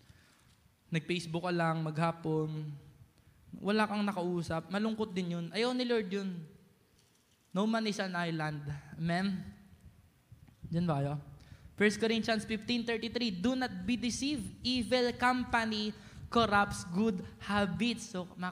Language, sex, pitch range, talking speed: Filipino, male, 160-220 Hz, 120 wpm